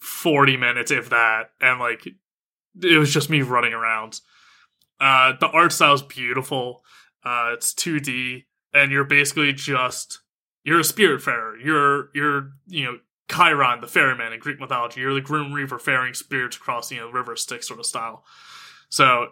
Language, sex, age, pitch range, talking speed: English, male, 20-39, 130-150 Hz, 170 wpm